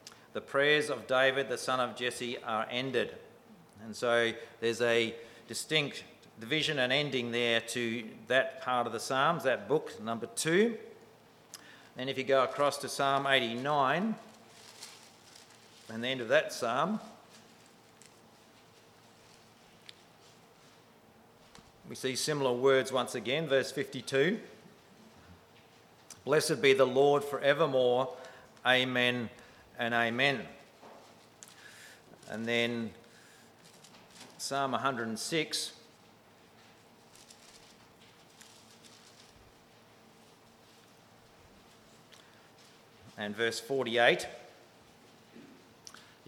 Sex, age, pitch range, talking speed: male, 50-69, 120-140 Hz, 85 wpm